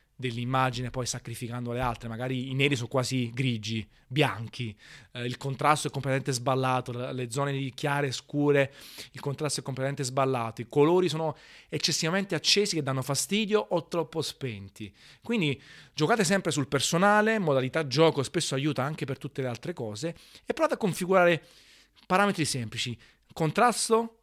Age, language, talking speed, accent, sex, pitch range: 30-49, Italian, 150 wpm, native, male, 120-145 Hz